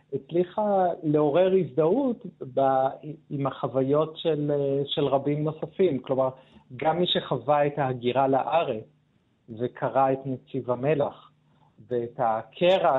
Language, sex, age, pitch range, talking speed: Hebrew, male, 40-59, 125-150 Hz, 105 wpm